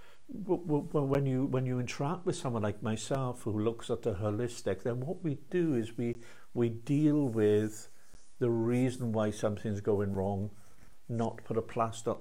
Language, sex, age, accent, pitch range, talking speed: English, male, 50-69, British, 110-135 Hz, 160 wpm